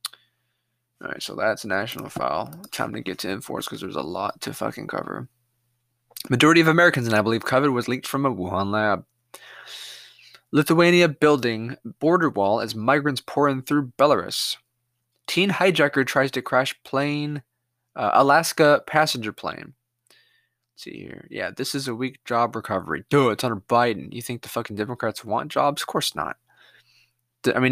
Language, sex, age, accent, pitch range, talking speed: English, male, 20-39, American, 115-145 Hz, 165 wpm